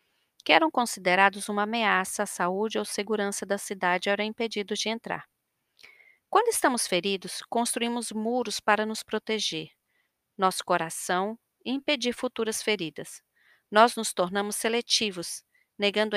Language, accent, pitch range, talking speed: Portuguese, Brazilian, 200-245 Hz, 125 wpm